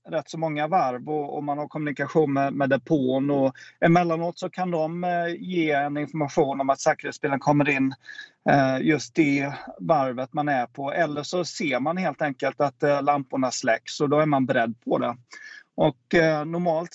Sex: male